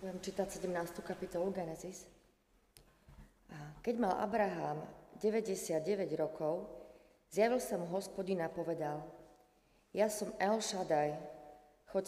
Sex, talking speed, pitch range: female, 100 wpm, 165-195 Hz